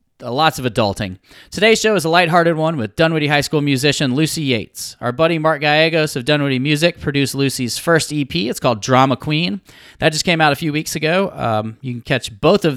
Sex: male